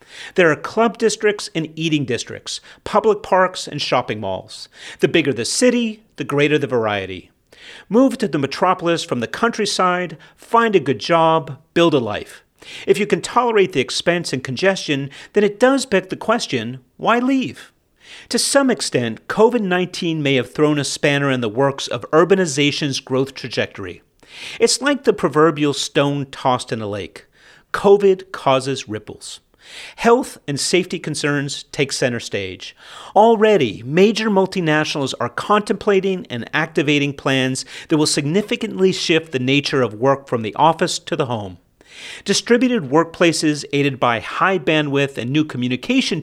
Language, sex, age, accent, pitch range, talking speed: English, male, 40-59, American, 135-200 Hz, 150 wpm